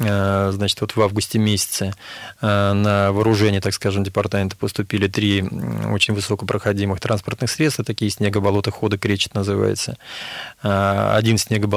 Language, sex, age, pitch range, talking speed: Russian, male, 20-39, 100-115 Hz, 105 wpm